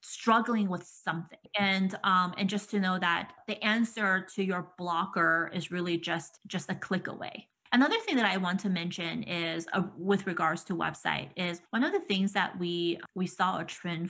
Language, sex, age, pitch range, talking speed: English, female, 20-39, 180-215 Hz, 195 wpm